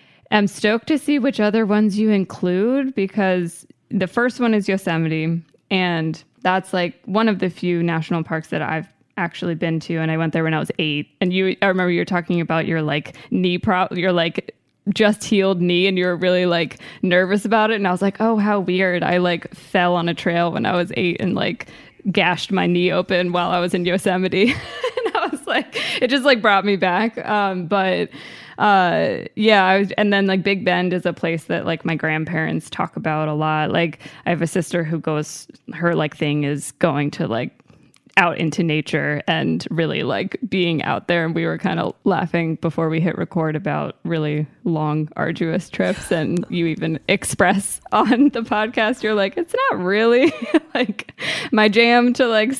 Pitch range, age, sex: 165-205 Hz, 20-39, female